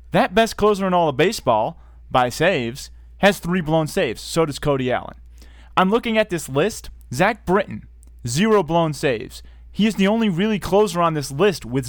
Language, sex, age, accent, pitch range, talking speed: English, male, 30-49, American, 115-185 Hz, 185 wpm